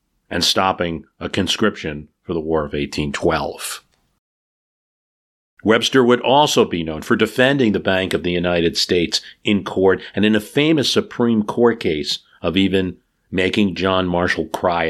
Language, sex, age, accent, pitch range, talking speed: English, male, 50-69, American, 90-120 Hz, 150 wpm